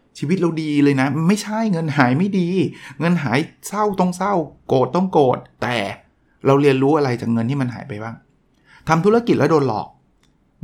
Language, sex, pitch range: Thai, male, 120-160 Hz